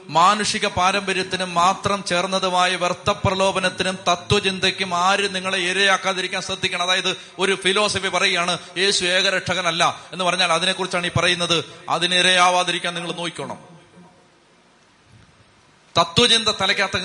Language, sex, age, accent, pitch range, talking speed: Malayalam, male, 30-49, native, 175-205 Hz, 100 wpm